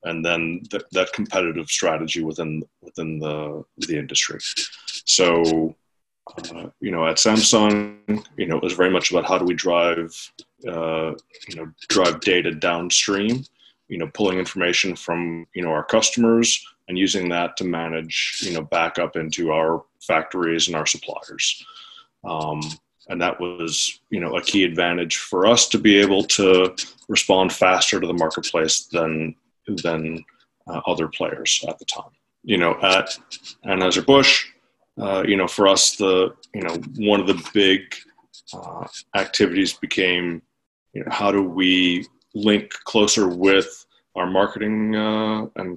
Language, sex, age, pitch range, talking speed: English, male, 20-39, 85-100 Hz, 155 wpm